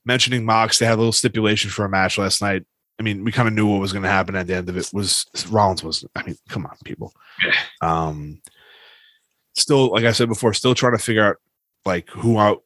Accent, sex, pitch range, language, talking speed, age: American, male, 90-115 Hz, English, 235 wpm, 20-39